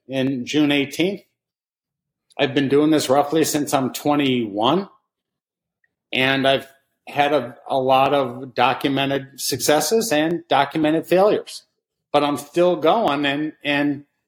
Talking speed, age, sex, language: 120 wpm, 50-69, male, English